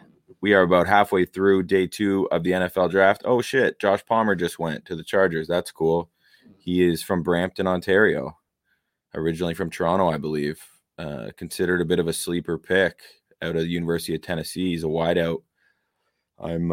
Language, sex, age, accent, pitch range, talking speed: English, male, 20-39, American, 80-90 Hz, 180 wpm